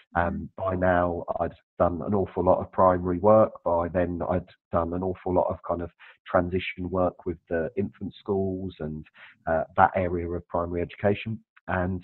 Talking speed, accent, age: 175 wpm, British, 30-49